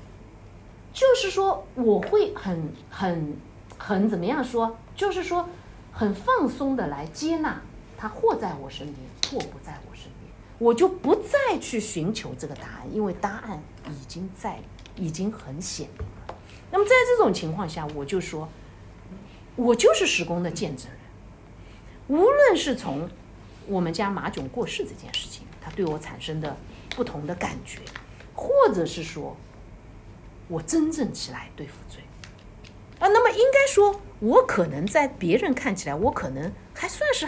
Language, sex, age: Chinese, female, 50-69